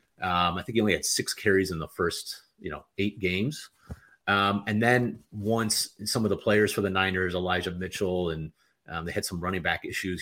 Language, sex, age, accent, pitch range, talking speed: English, male, 30-49, American, 95-120 Hz, 210 wpm